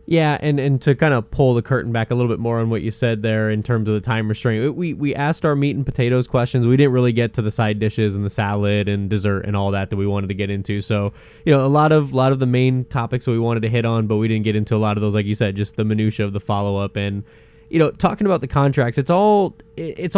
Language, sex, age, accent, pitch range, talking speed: English, male, 20-39, American, 105-125 Hz, 300 wpm